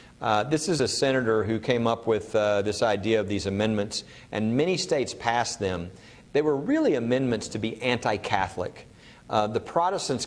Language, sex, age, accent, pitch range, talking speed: English, male, 50-69, American, 105-130 Hz, 170 wpm